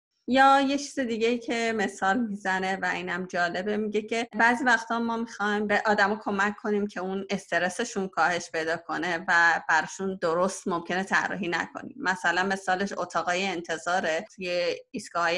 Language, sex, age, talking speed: Persian, female, 30-49, 150 wpm